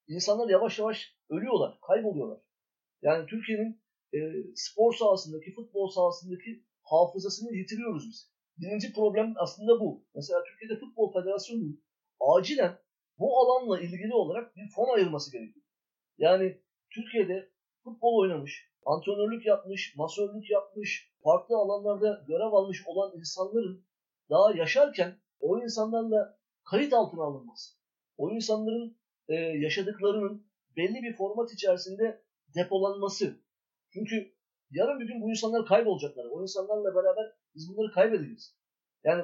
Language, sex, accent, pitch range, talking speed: Turkish, male, native, 185-225 Hz, 115 wpm